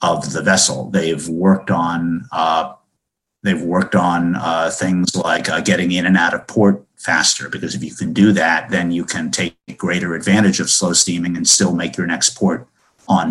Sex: male